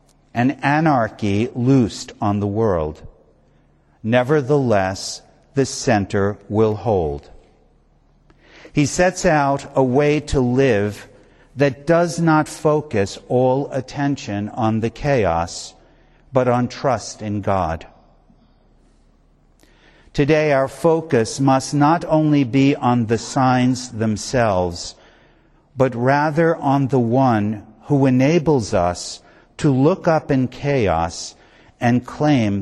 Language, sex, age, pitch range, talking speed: English, male, 60-79, 100-140 Hz, 105 wpm